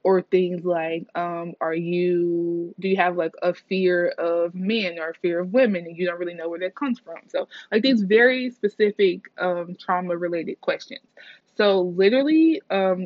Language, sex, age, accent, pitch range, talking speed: English, female, 20-39, American, 175-235 Hz, 180 wpm